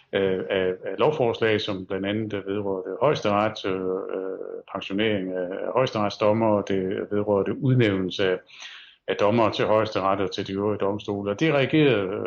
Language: Danish